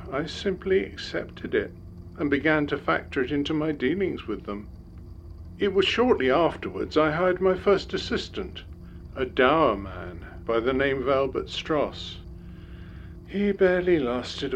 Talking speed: 145 wpm